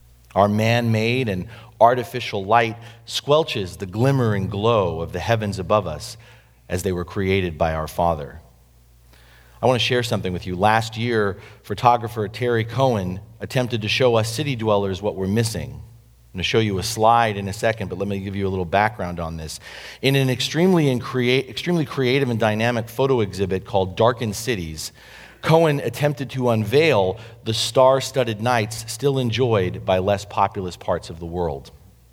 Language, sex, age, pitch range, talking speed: English, male, 40-59, 95-125 Hz, 170 wpm